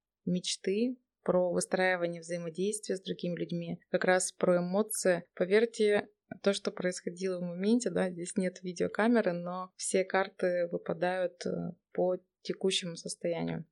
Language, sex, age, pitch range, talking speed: Russian, female, 20-39, 175-205 Hz, 120 wpm